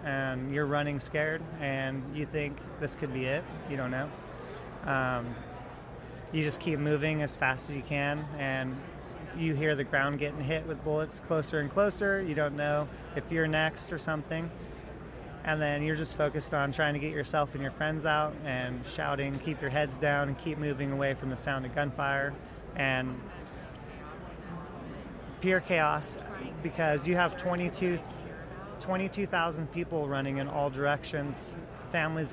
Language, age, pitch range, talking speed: English, 30-49, 140-155 Hz, 160 wpm